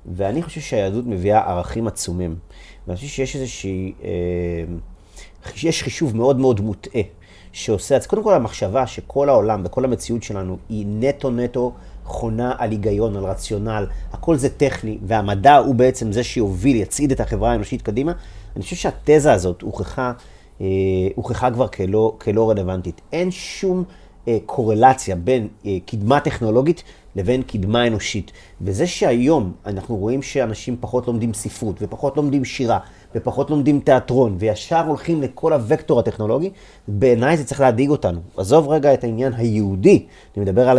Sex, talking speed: male, 140 wpm